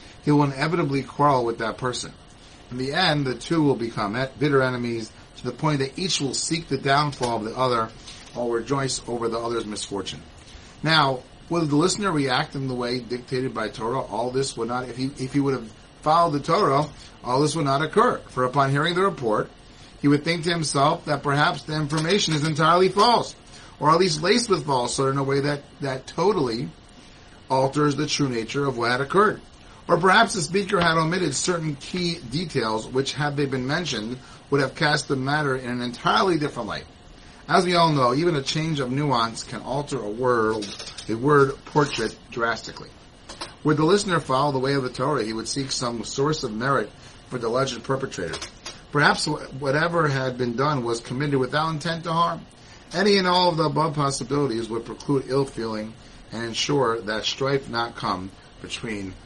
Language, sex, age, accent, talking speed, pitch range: English, male, 30-49, American, 190 wpm, 120-150 Hz